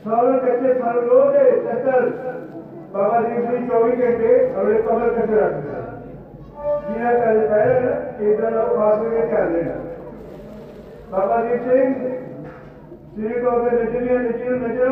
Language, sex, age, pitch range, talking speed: Punjabi, male, 50-69, 220-250 Hz, 120 wpm